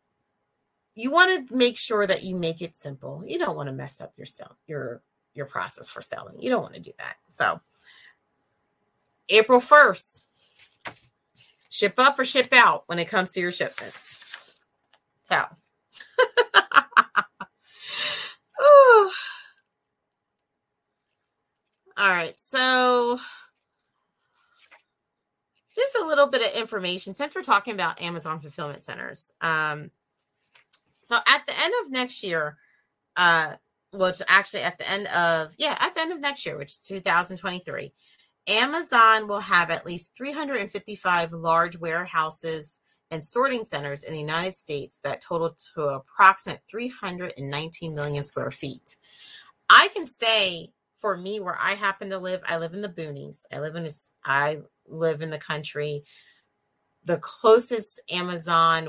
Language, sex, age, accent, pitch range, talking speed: English, female, 30-49, American, 160-245 Hz, 135 wpm